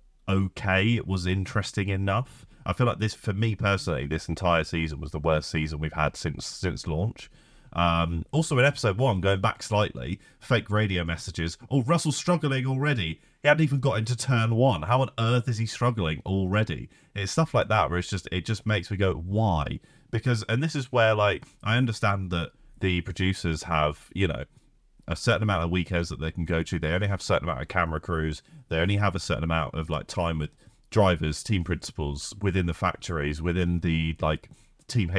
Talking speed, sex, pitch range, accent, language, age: 200 wpm, male, 85-120 Hz, British, English, 30-49